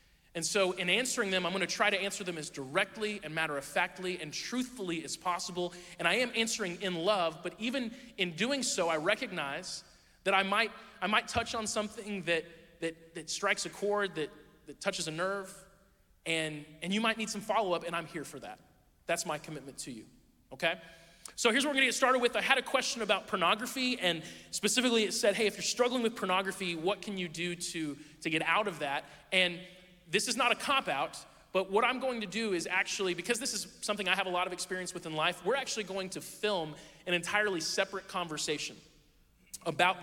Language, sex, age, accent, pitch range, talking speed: English, male, 20-39, American, 170-210 Hz, 210 wpm